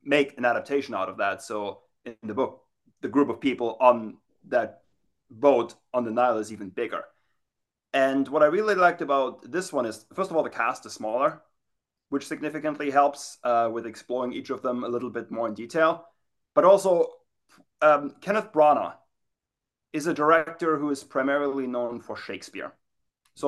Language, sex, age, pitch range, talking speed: English, male, 30-49, 120-150 Hz, 175 wpm